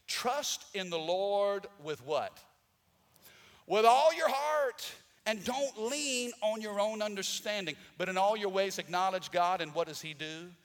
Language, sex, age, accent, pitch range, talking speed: English, male, 50-69, American, 140-185 Hz, 165 wpm